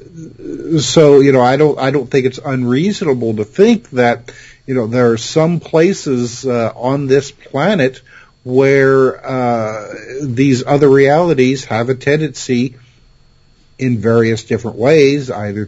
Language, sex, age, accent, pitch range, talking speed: English, male, 50-69, American, 110-135 Hz, 140 wpm